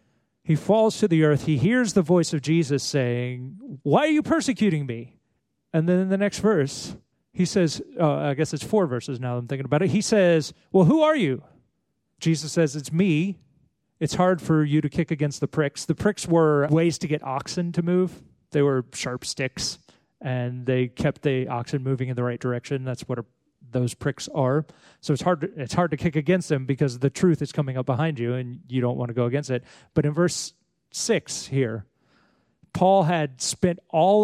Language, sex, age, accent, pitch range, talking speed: English, male, 30-49, American, 135-175 Hz, 215 wpm